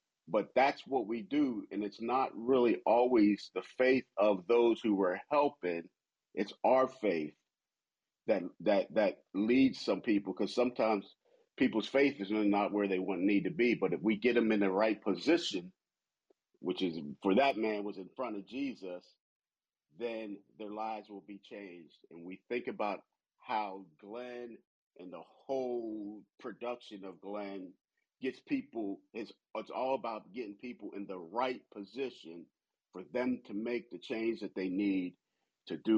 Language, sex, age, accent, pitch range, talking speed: English, male, 40-59, American, 95-115 Hz, 165 wpm